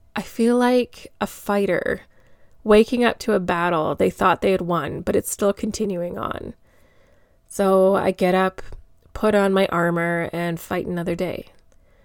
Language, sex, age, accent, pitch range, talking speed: English, female, 20-39, American, 185-245 Hz, 160 wpm